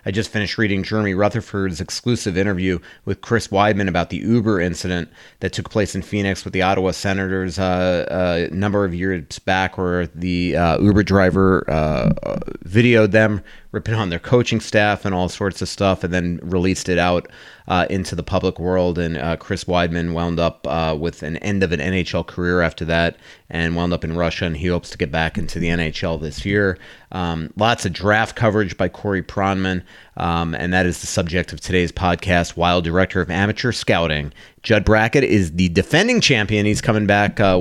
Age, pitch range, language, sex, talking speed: 30-49, 85-100 Hz, English, male, 195 wpm